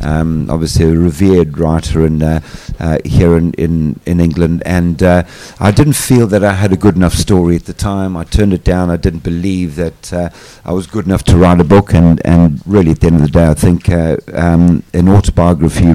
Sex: male